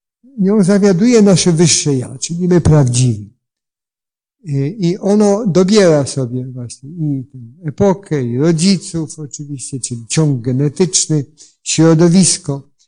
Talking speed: 105 wpm